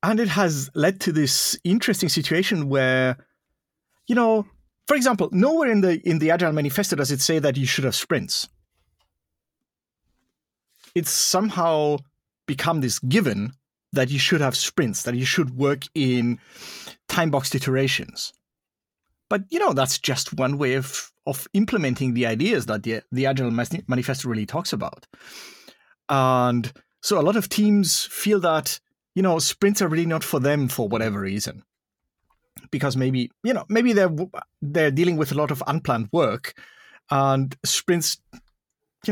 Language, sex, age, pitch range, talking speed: English, male, 30-49, 130-175 Hz, 155 wpm